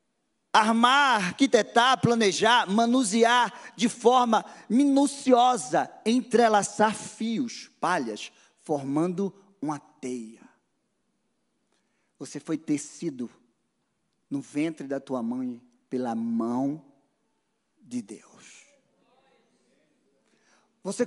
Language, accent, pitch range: Portuguese, Brazilian, 170-255 Hz